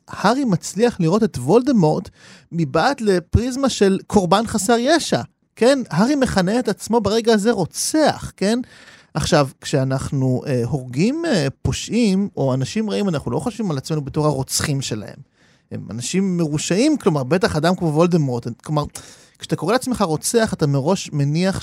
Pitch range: 150-205 Hz